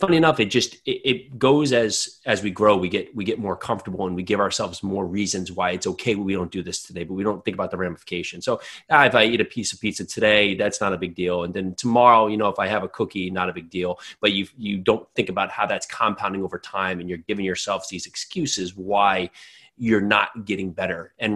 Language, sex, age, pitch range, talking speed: English, male, 30-49, 95-115 Hz, 255 wpm